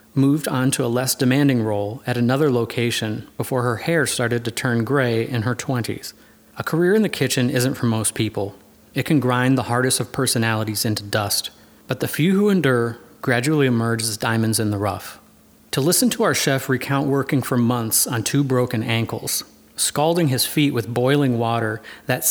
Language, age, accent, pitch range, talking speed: English, 30-49, American, 115-135 Hz, 190 wpm